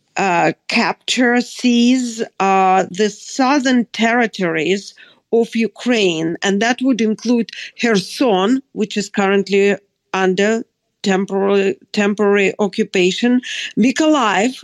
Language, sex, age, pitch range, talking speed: English, female, 50-69, 195-240 Hz, 90 wpm